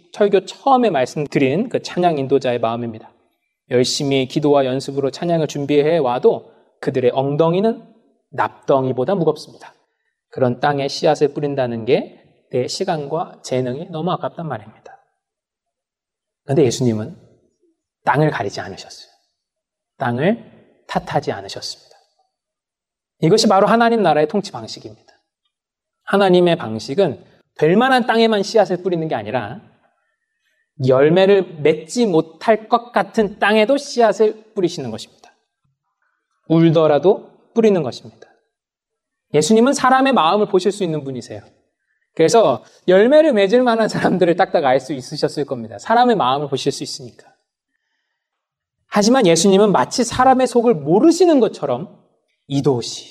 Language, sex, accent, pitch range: Korean, male, native, 140-225 Hz